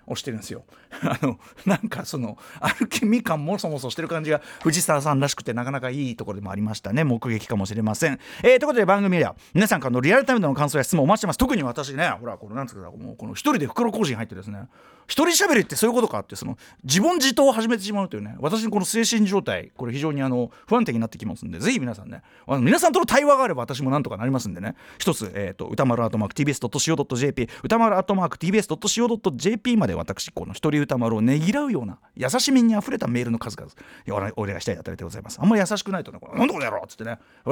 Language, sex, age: Japanese, male, 40-59